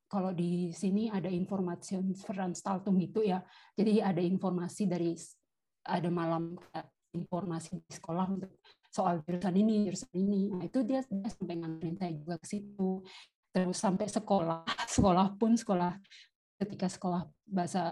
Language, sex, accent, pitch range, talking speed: Indonesian, female, native, 175-205 Hz, 145 wpm